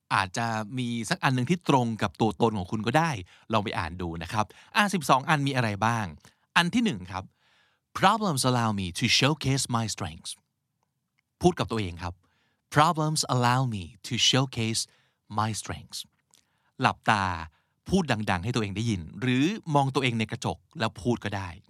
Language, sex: Thai, male